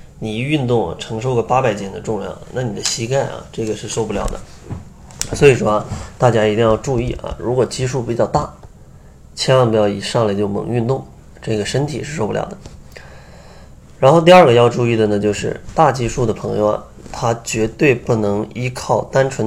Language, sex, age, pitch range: Chinese, male, 20-39, 105-135 Hz